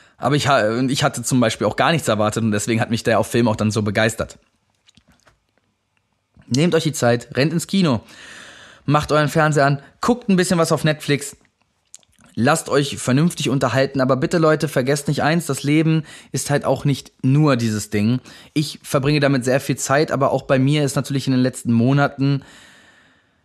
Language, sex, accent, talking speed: German, male, German, 185 wpm